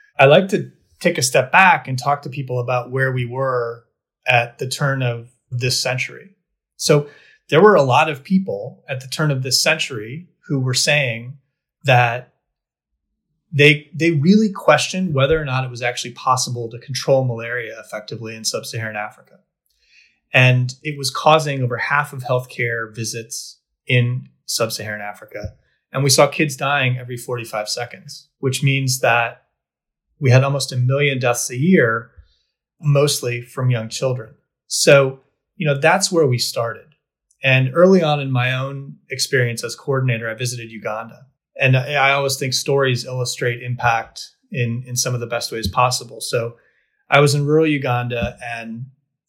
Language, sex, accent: English, male, American